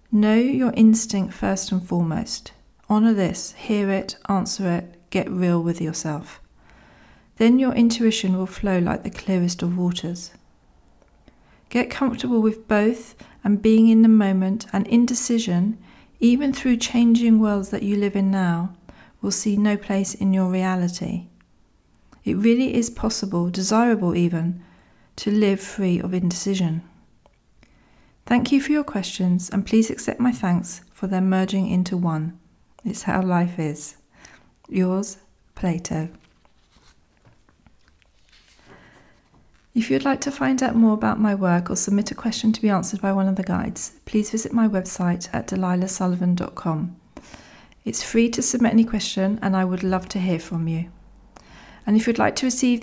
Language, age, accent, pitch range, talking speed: English, 40-59, British, 180-220 Hz, 150 wpm